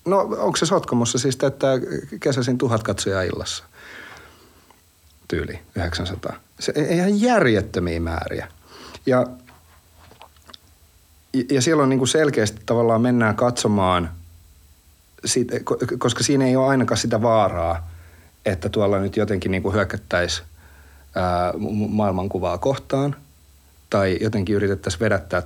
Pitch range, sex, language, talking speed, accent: 90-115 Hz, male, Finnish, 105 wpm, native